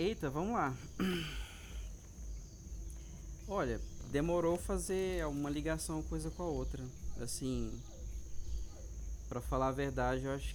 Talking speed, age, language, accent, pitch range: 115 wpm, 20-39, Portuguese, Brazilian, 120-165 Hz